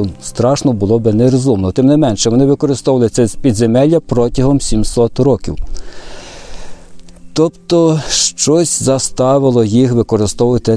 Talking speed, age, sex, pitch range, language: 105 wpm, 50-69, male, 110-135 Hz, Ukrainian